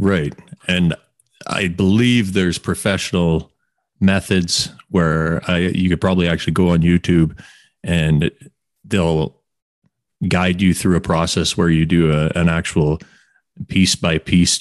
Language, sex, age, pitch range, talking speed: English, male, 30-49, 80-100 Hz, 130 wpm